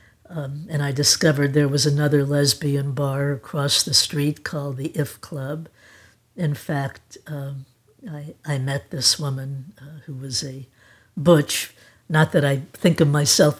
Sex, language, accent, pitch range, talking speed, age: female, English, American, 140-160 Hz, 155 wpm, 60-79